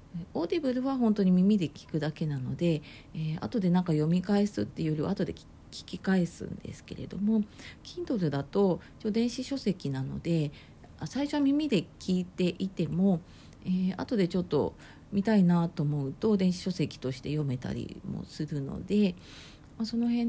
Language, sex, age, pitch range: Japanese, female, 40-59, 145-200 Hz